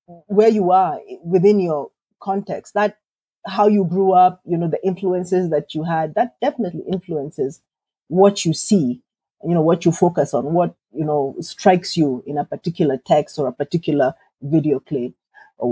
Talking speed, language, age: 170 wpm, English, 30-49